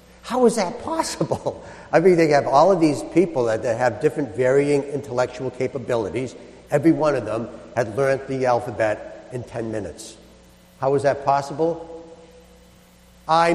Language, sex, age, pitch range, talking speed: English, male, 60-79, 150-235 Hz, 150 wpm